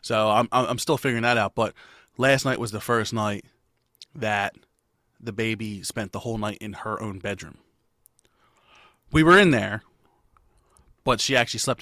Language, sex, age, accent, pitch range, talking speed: English, male, 30-49, American, 110-135 Hz, 170 wpm